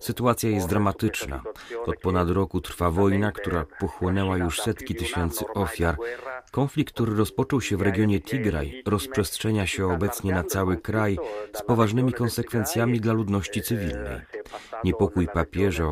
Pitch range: 90-115 Hz